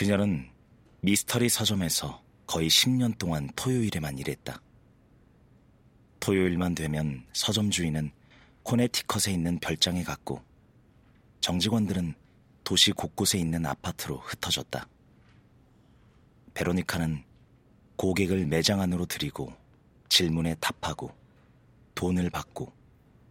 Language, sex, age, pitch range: Korean, male, 40-59, 80-105 Hz